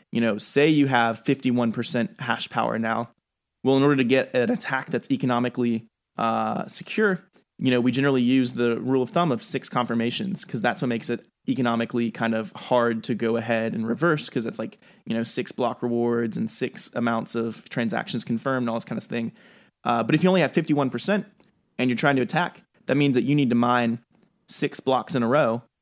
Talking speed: 210 wpm